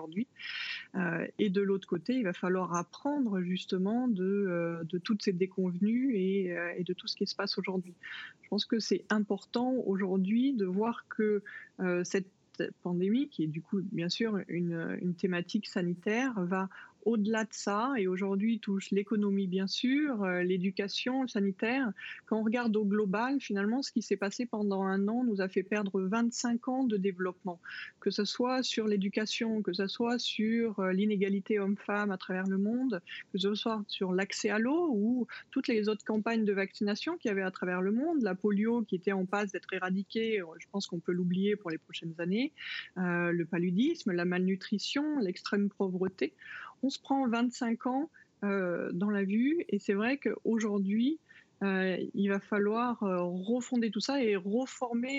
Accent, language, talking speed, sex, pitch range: French, French, 180 wpm, female, 190-230 Hz